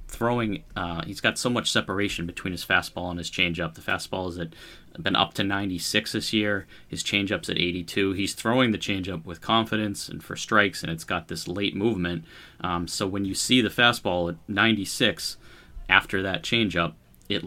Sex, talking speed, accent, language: male, 190 wpm, American, English